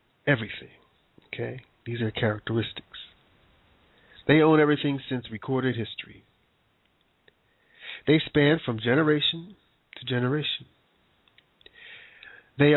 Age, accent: 40-59, American